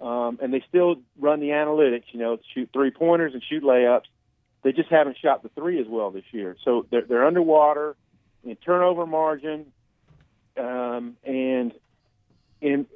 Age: 40-59